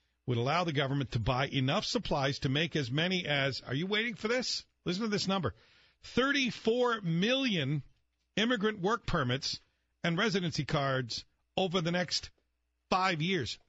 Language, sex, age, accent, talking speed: English, male, 50-69, American, 155 wpm